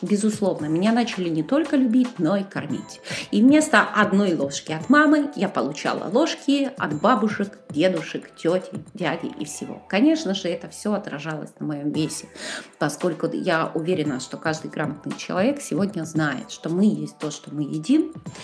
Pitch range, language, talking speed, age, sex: 170-245 Hz, Russian, 160 wpm, 30-49, female